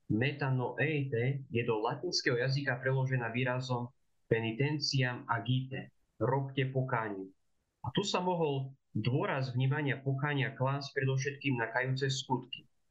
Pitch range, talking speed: 115-140 Hz, 105 wpm